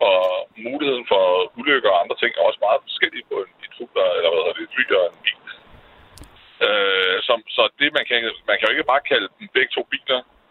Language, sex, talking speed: Danish, male, 210 wpm